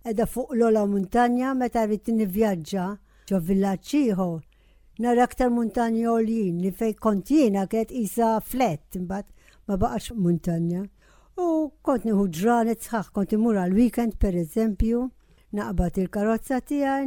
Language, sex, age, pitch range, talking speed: English, female, 60-79, 195-245 Hz, 115 wpm